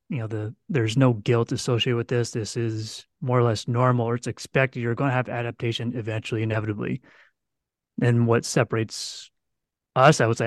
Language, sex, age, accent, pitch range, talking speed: English, male, 30-49, American, 115-130 Hz, 185 wpm